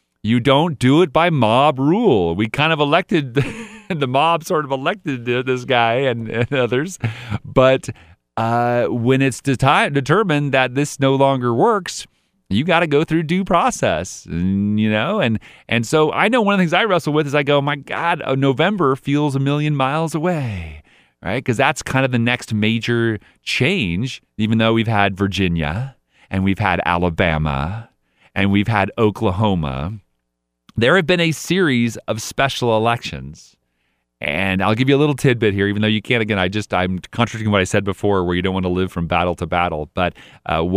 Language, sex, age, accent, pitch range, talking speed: English, male, 40-59, American, 95-140 Hz, 190 wpm